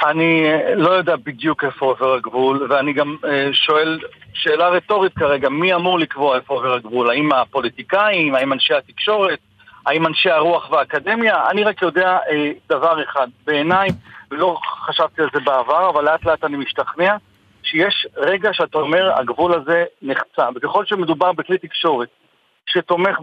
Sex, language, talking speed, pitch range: male, Hebrew, 145 wpm, 155-210 Hz